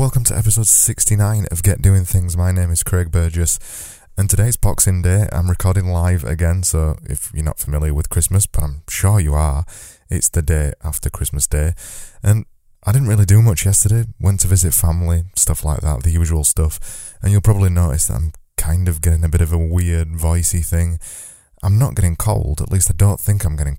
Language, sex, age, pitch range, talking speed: English, male, 20-39, 80-100 Hz, 210 wpm